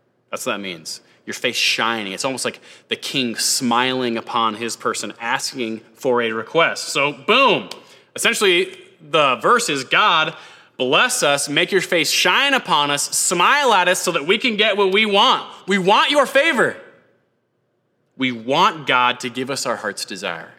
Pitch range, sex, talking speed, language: 115-190 Hz, male, 170 wpm, English